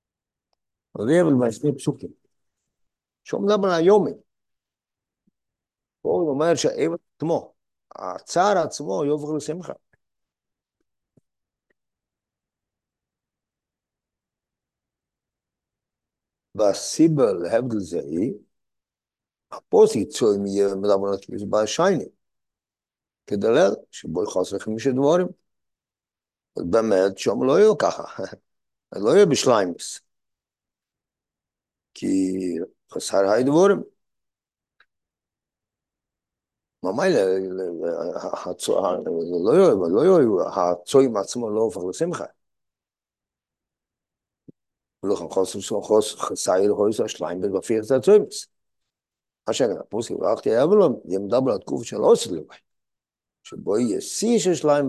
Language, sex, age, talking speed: Hebrew, male, 50-69, 75 wpm